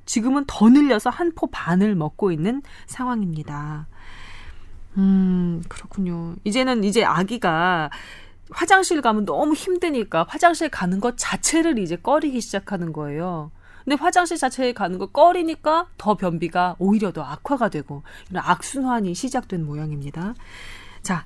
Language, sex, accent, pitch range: Korean, female, native, 155-235 Hz